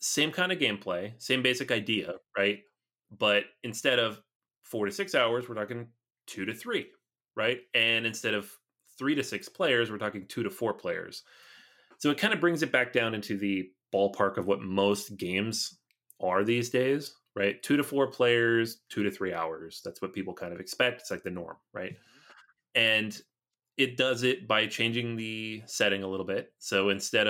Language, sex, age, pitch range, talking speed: English, male, 30-49, 100-125 Hz, 185 wpm